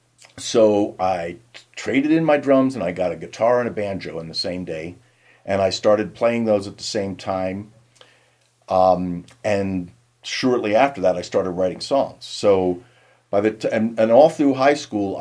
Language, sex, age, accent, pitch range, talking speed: English, male, 50-69, American, 90-120 Hz, 185 wpm